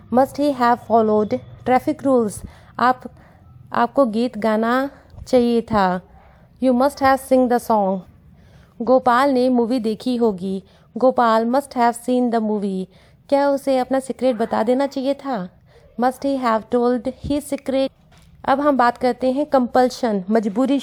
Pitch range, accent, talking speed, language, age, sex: 225-265 Hz, native, 145 wpm, Hindi, 30-49, female